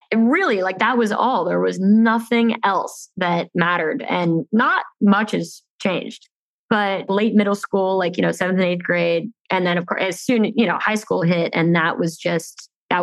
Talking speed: 205 wpm